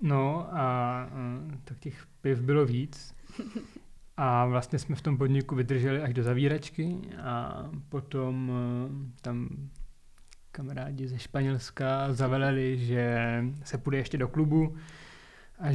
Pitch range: 125-155 Hz